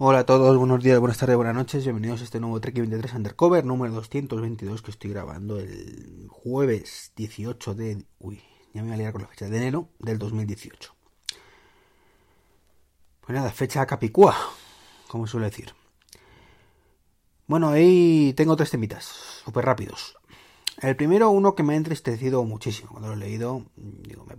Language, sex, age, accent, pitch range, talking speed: Spanish, male, 30-49, Spanish, 105-130 Hz, 160 wpm